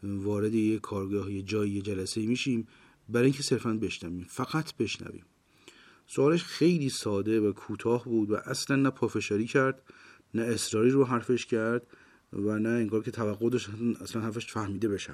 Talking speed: 155 wpm